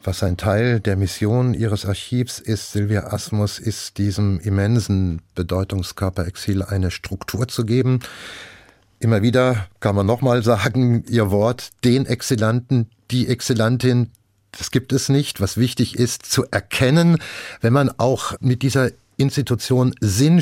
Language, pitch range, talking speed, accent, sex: German, 105-130 Hz, 135 wpm, German, male